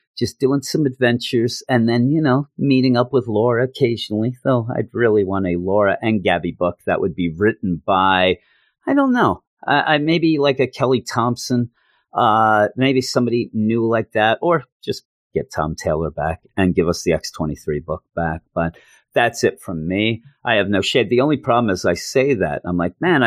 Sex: male